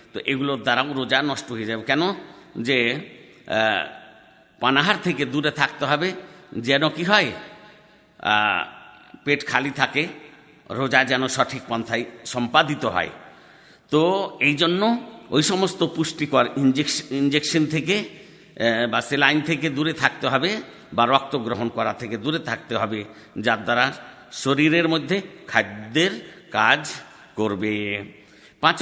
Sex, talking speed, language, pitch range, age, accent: male, 120 wpm, Bengali, 115-155 Hz, 60-79, native